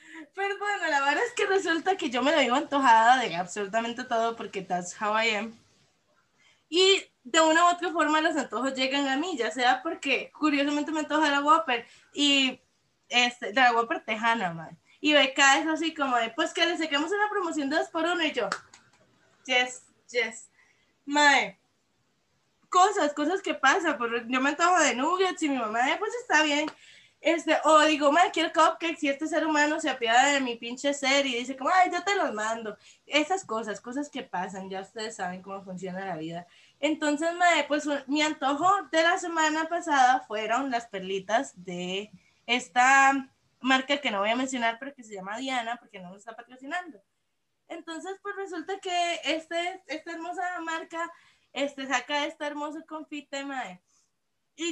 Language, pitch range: Spanish, 240-325 Hz